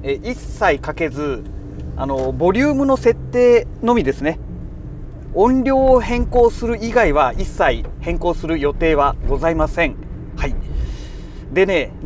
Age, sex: 40-59, male